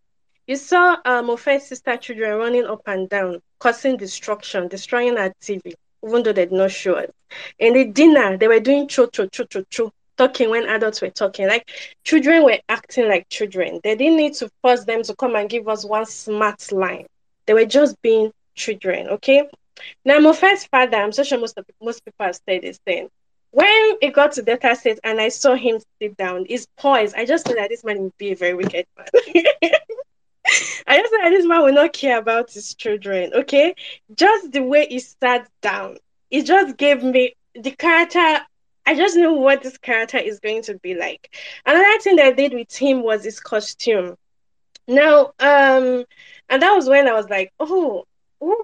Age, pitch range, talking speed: 10-29, 215-290 Hz, 195 wpm